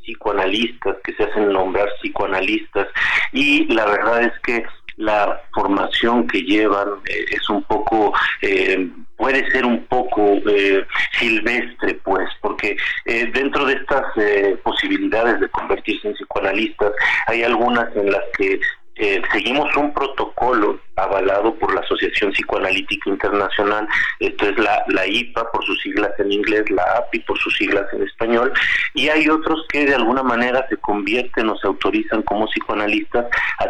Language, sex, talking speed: Spanish, male, 150 wpm